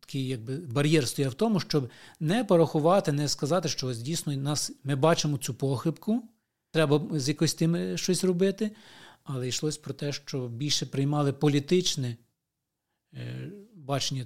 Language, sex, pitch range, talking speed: Ukrainian, male, 130-155 Hz, 130 wpm